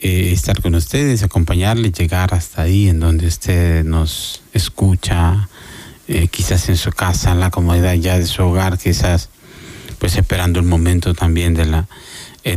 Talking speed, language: 160 wpm, Spanish